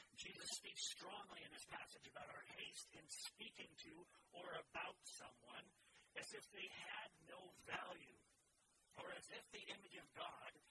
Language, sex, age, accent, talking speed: English, male, 50-69, American, 155 wpm